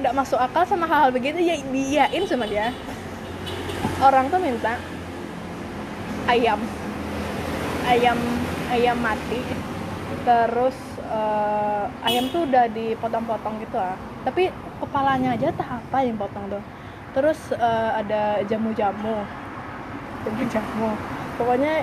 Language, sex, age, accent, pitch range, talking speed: Indonesian, female, 20-39, native, 220-290 Hz, 110 wpm